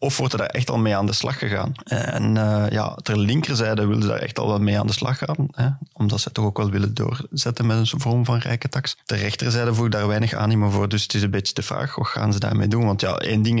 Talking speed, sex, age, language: 280 wpm, male, 20-39, Dutch